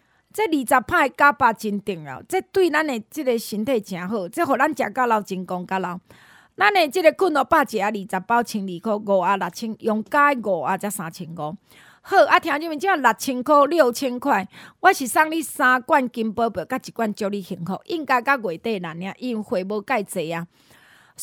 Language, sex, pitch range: Chinese, female, 210-305 Hz